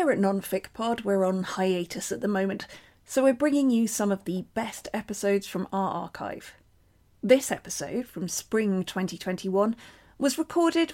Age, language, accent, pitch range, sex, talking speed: 40-59, English, British, 185-225 Hz, female, 160 wpm